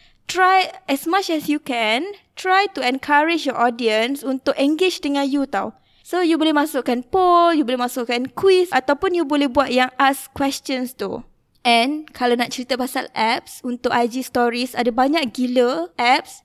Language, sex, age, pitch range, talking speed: Malay, female, 20-39, 250-315 Hz, 170 wpm